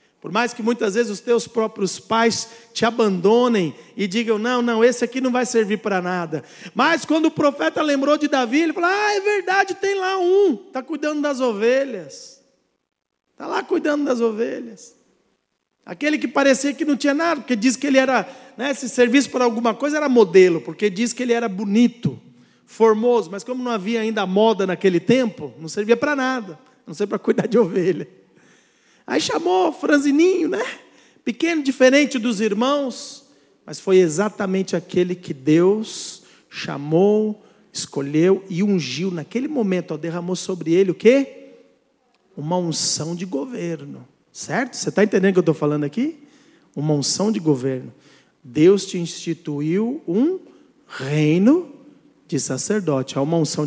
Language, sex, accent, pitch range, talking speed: Portuguese, male, Brazilian, 180-270 Hz, 165 wpm